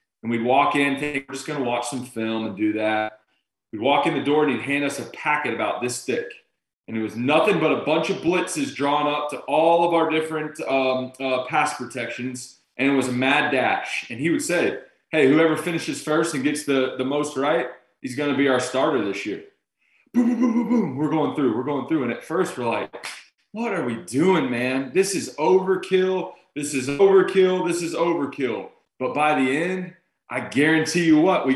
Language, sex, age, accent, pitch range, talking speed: English, male, 20-39, American, 130-170 Hz, 220 wpm